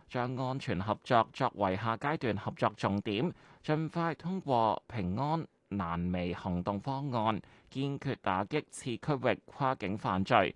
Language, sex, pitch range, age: Chinese, male, 95-135 Hz, 20-39